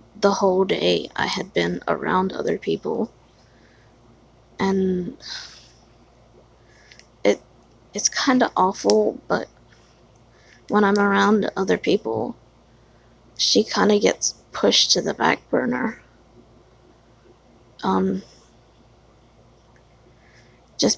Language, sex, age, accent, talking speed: English, female, 20-39, American, 85 wpm